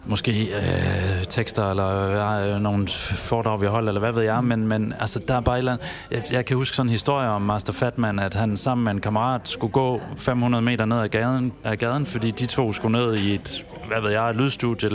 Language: Danish